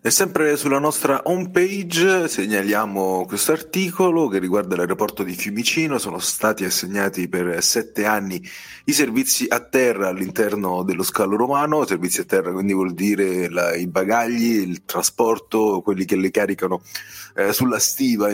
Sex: male